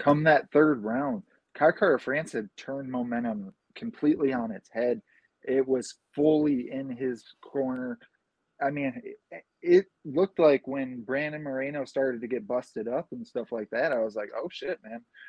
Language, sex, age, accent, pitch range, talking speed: English, male, 20-39, American, 130-155 Hz, 170 wpm